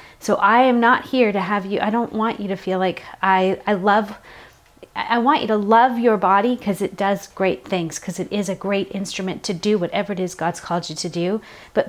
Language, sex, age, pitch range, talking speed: English, female, 30-49, 190-230 Hz, 235 wpm